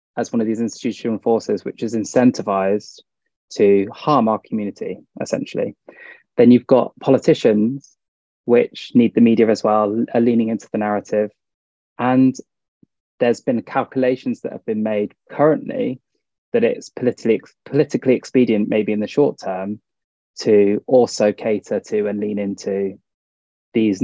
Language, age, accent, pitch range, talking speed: English, 20-39, British, 100-125 Hz, 140 wpm